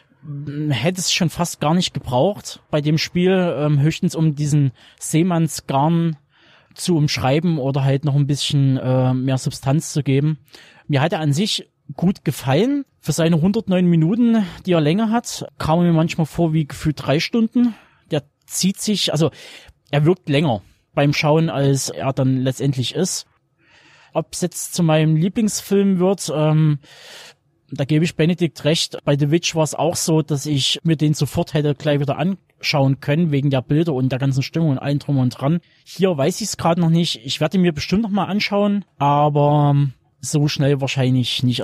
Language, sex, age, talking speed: German, male, 20-39, 185 wpm